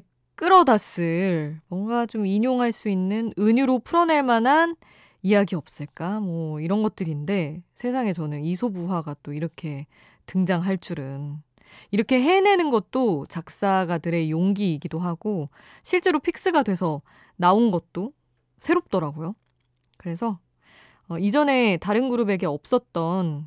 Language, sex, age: Korean, female, 20-39